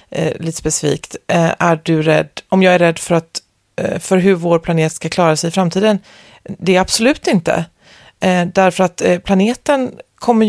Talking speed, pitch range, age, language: 155 wpm, 160-205 Hz, 30-49, English